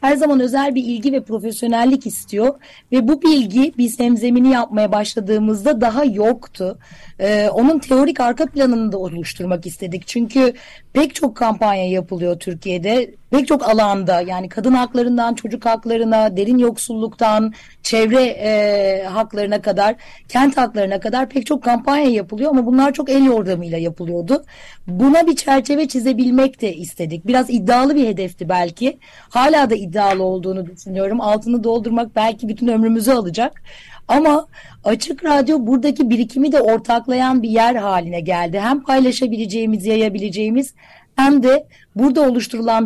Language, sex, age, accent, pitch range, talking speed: Turkish, female, 40-59, native, 210-265 Hz, 135 wpm